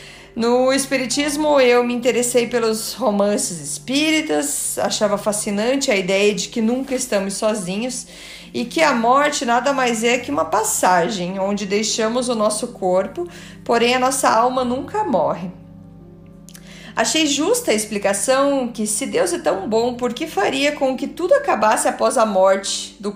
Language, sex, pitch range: Portuguese, female, 205-265 Hz